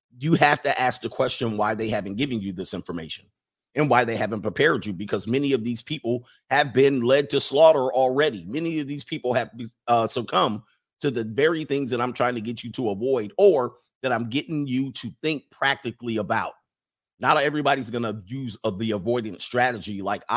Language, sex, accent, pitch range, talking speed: English, male, American, 115-140 Hz, 200 wpm